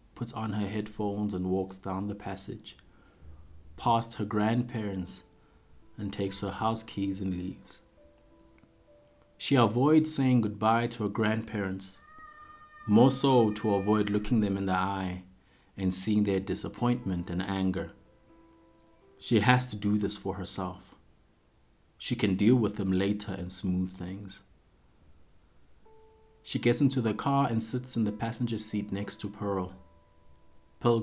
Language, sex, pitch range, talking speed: English, male, 95-115 Hz, 140 wpm